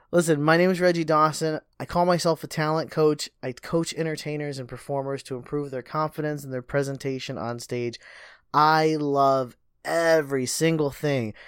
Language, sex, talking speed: English, male, 165 wpm